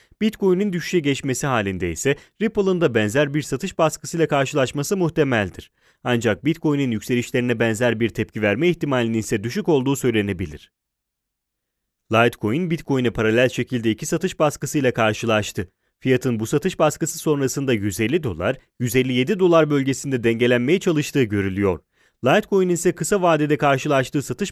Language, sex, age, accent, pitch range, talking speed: Italian, male, 30-49, Turkish, 115-160 Hz, 125 wpm